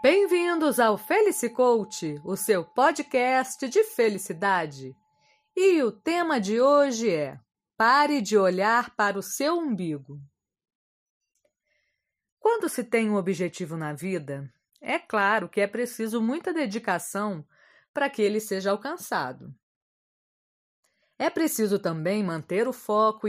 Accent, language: Brazilian, Portuguese